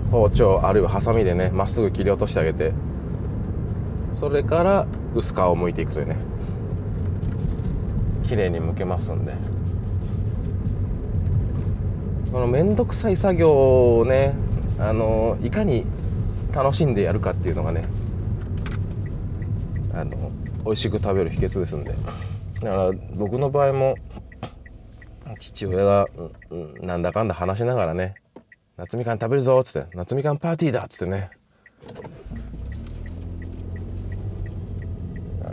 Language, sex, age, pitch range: Japanese, male, 20-39, 90-110 Hz